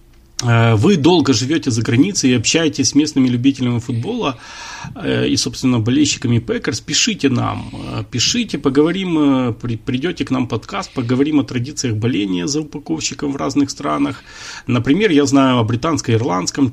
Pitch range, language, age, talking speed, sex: 115-150 Hz, Russian, 30-49, 135 wpm, male